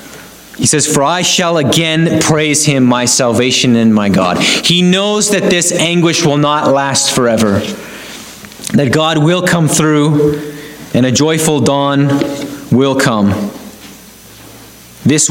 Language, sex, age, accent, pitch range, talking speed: English, male, 30-49, American, 115-160 Hz, 135 wpm